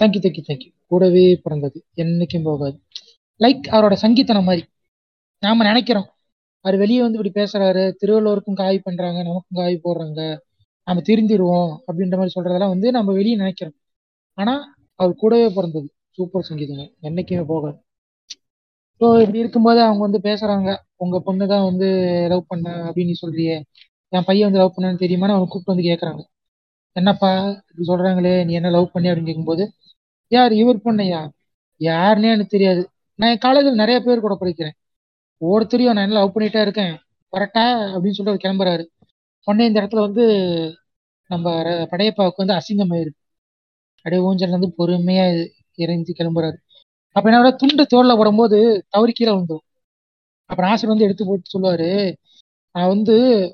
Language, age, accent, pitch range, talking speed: Tamil, 30-49, native, 170-210 Hz, 145 wpm